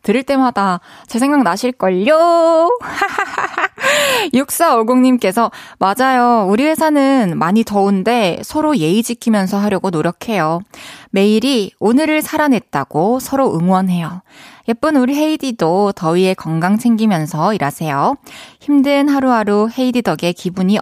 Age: 20-39